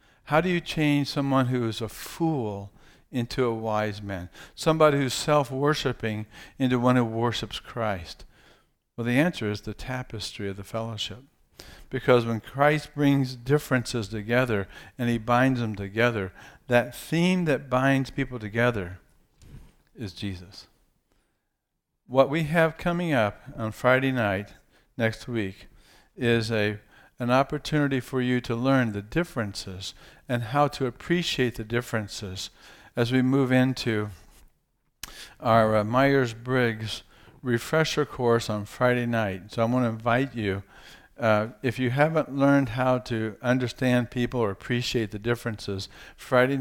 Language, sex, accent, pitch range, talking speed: English, male, American, 110-135 Hz, 140 wpm